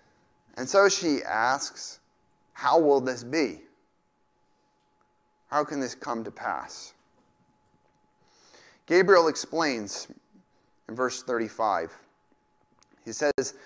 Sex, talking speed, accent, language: male, 90 wpm, American, English